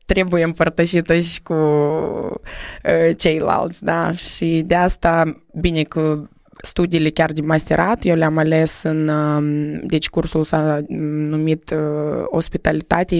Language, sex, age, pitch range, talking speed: Romanian, female, 20-39, 155-180 Hz, 110 wpm